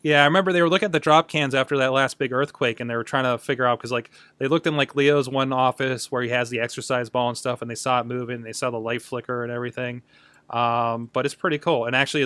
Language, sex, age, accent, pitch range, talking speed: English, male, 20-39, American, 120-145 Hz, 290 wpm